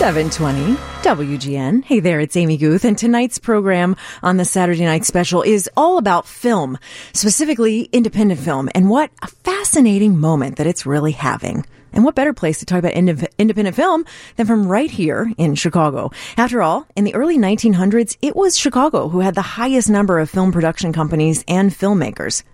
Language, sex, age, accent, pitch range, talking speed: English, female, 30-49, American, 155-215 Hz, 175 wpm